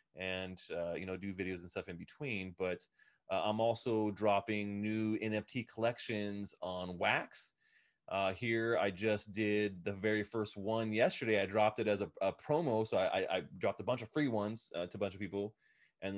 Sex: male